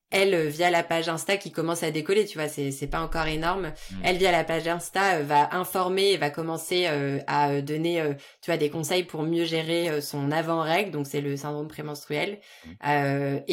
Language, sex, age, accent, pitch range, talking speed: French, female, 20-39, French, 150-190 Hz, 200 wpm